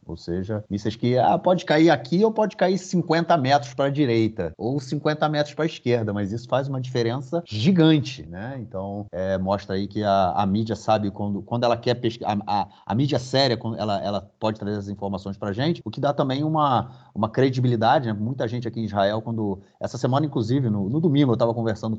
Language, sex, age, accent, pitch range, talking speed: Portuguese, male, 30-49, Brazilian, 105-140 Hz, 215 wpm